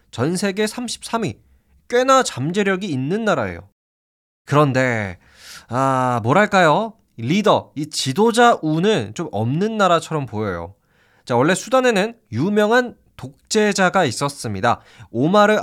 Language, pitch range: Korean, 120-205 Hz